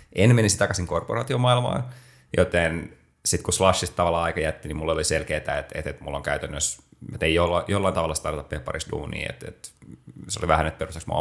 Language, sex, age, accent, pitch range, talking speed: Finnish, male, 30-49, native, 75-90 Hz, 180 wpm